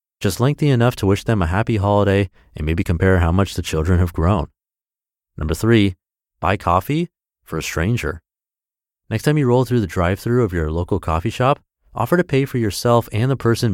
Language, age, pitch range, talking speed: English, 30-49, 85-115 Hz, 195 wpm